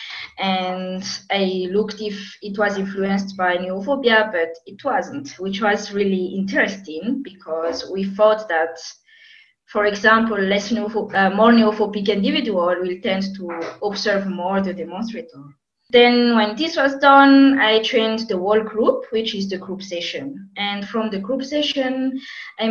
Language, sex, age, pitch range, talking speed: English, female, 20-39, 195-245 Hz, 150 wpm